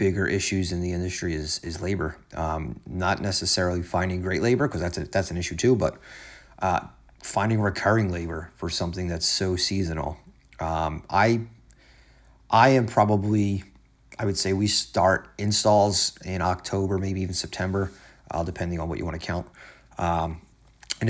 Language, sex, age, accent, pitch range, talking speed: English, male, 30-49, American, 85-105 Hz, 160 wpm